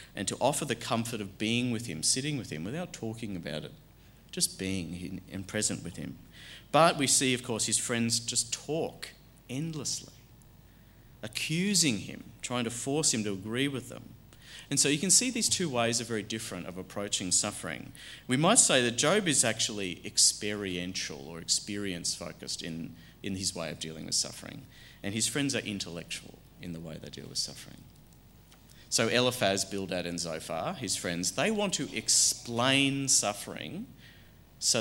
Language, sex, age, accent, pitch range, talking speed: English, male, 40-59, Australian, 95-125 Hz, 170 wpm